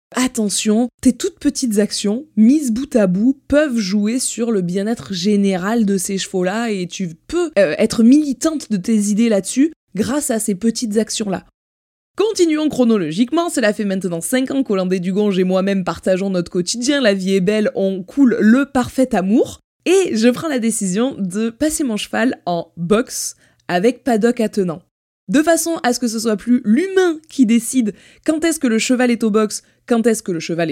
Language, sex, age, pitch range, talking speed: French, female, 20-39, 200-260 Hz, 185 wpm